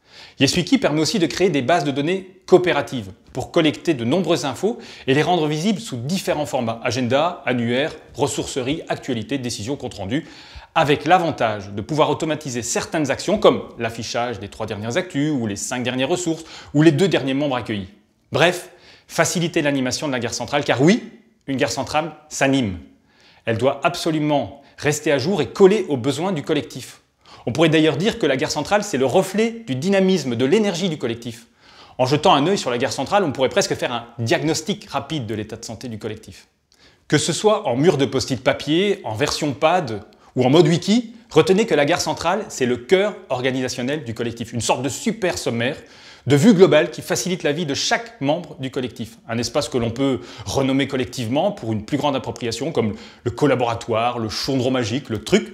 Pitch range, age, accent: 120-170 Hz, 30-49, French